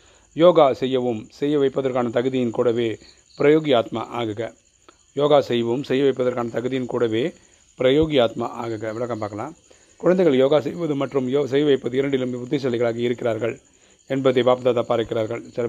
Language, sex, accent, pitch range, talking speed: Tamil, male, native, 120-140 Hz, 120 wpm